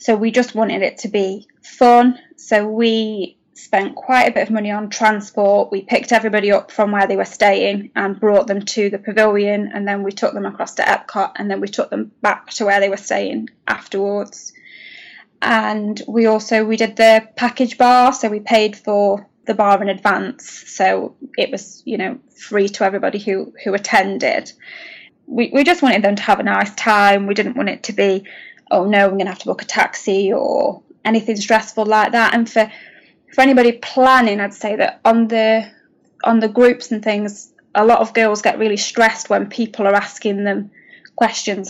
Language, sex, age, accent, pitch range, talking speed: English, female, 10-29, British, 205-230 Hz, 200 wpm